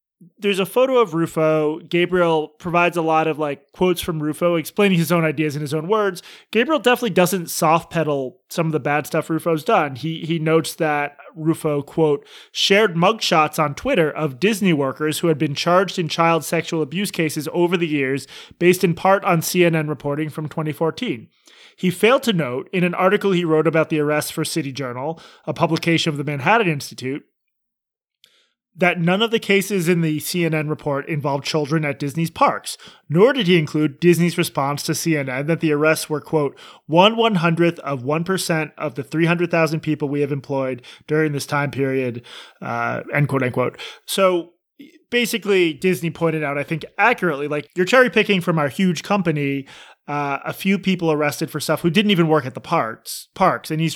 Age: 20-39